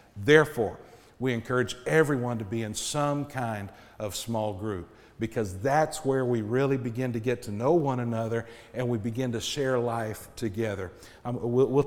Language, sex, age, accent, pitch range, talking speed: English, male, 50-69, American, 110-140 Hz, 160 wpm